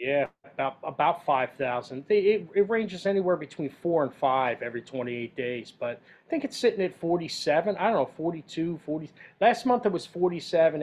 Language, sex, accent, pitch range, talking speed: English, male, American, 135-185 Hz, 175 wpm